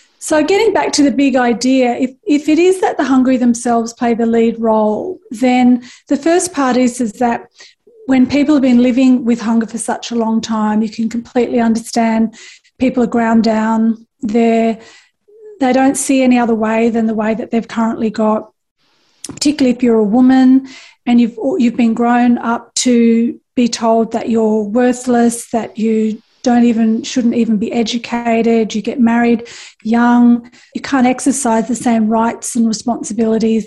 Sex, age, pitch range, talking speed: female, 40-59, 225-260 Hz, 175 wpm